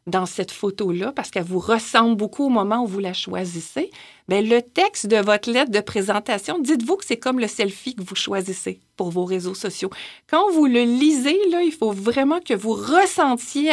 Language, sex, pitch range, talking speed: French, female, 205-285 Hz, 200 wpm